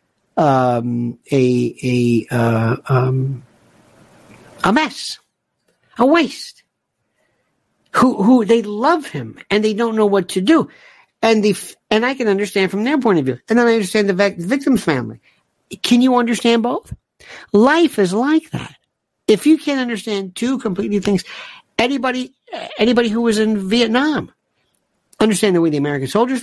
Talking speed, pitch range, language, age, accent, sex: 150 wpm, 180-260 Hz, English, 60-79, American, male